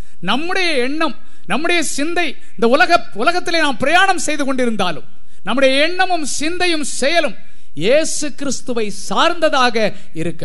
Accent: native